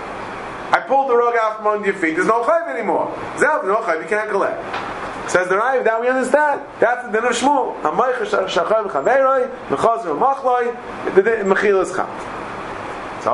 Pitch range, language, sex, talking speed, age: 155-230 Hz, English, male, 170 wpm, 30-49